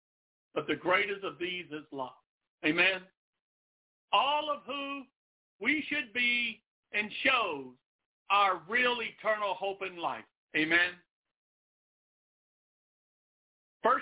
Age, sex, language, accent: 50-69, male, English, American